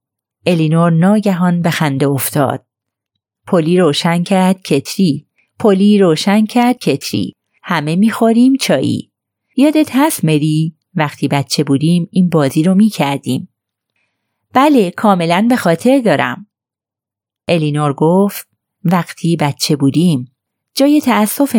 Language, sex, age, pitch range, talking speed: Persian, female, 30-49, 140-200 Hz, 105 wpm